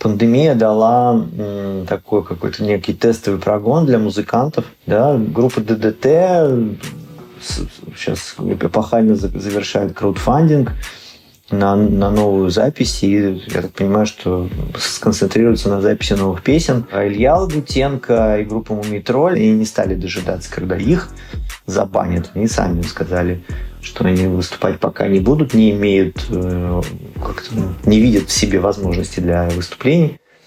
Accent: native